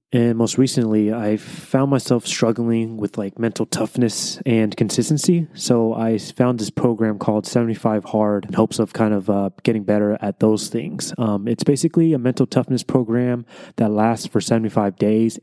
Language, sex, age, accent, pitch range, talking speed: English, male, 20-39, American, 110-125 Hz, 180 wpm